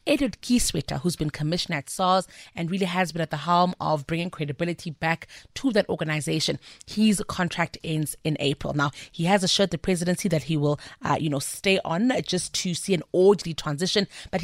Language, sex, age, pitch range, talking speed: English, female, 30-49, 160-195 Hz, 195 wpm